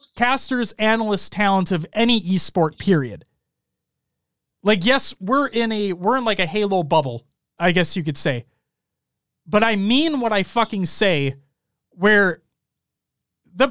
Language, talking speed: English, 140 wpm